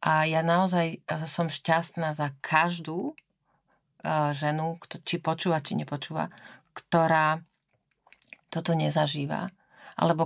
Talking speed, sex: 95 wpm, female